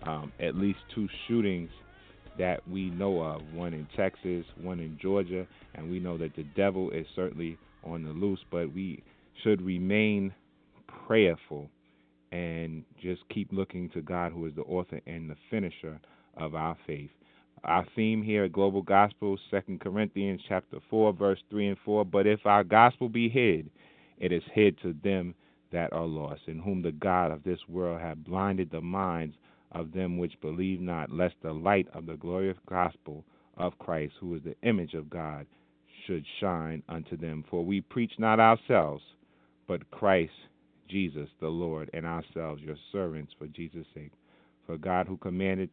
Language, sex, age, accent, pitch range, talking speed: English, male, 40-59, American, 80-95 Hz, 170 wpm